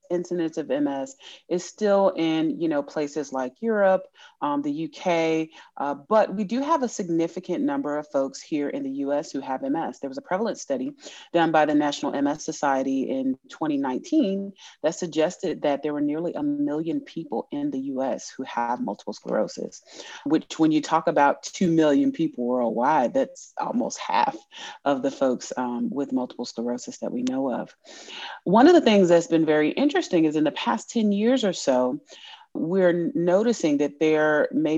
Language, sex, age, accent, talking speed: English, female, 30-49, American, 180 wpm